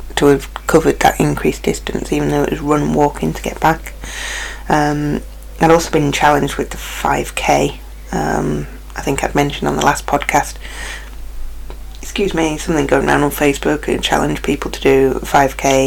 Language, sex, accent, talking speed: English, female, British, 175 wpm